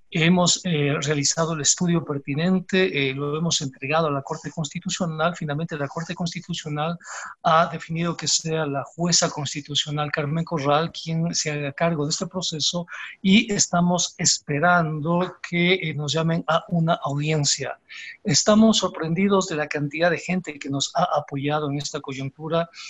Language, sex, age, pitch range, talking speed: Spanish, male, 50-69, 145-170 Hz, 150 wpm